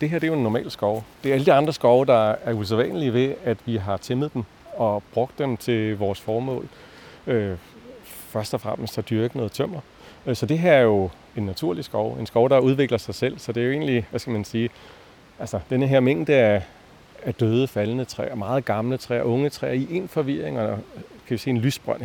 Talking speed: 225 wpm